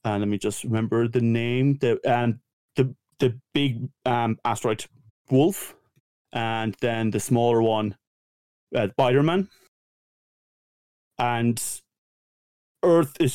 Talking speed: 125 wpm